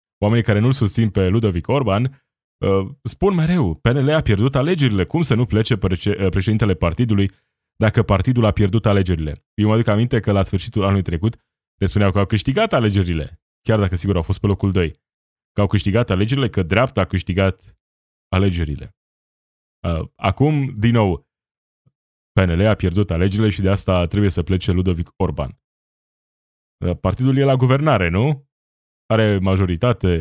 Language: Romanian